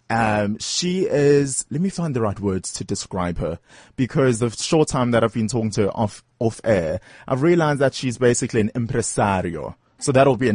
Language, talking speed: English, 205 wpm